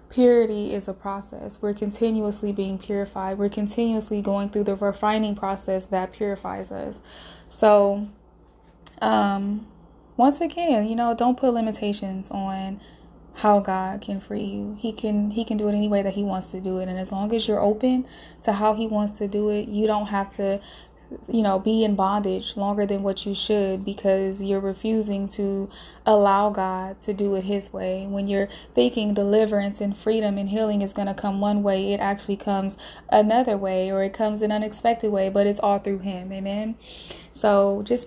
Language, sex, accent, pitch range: English, female, American, 200-220 Hz